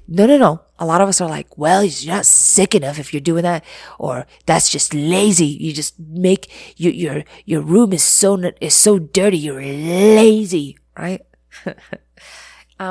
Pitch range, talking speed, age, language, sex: 140-200 Hz, 170 wpm, 30-49, English, female